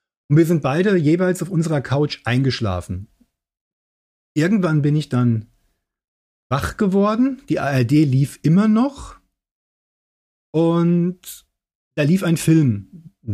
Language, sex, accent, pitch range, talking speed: German, male, German, 125-165 Hz, 115 wpm